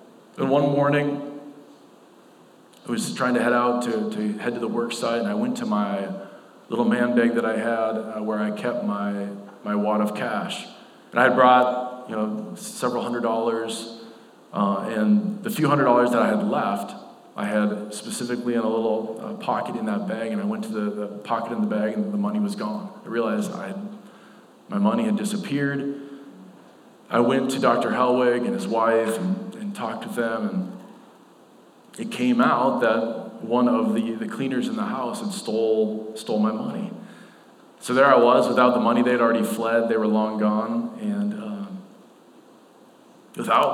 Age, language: 40-59, English